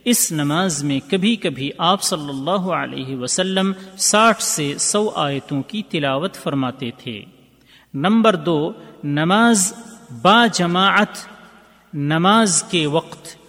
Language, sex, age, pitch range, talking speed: Urdu, male, 40-59, 140-200 Hz, 115 wpm